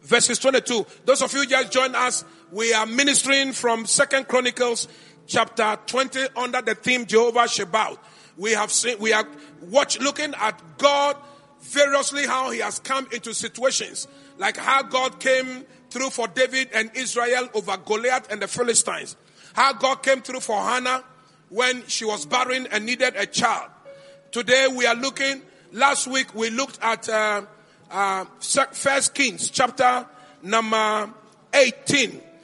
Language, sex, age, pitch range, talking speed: English, male, 40-59, 225-270 Hz, 150 wpm